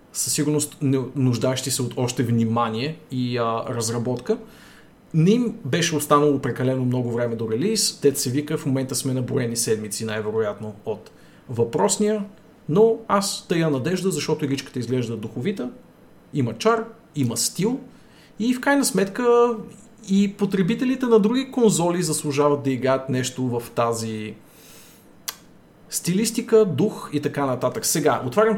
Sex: male